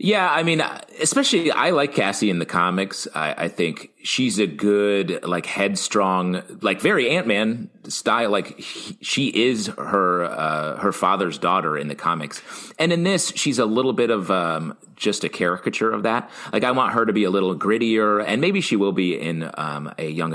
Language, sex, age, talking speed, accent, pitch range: English, male, 30-49, 200 wpm, American, 85-115 Hz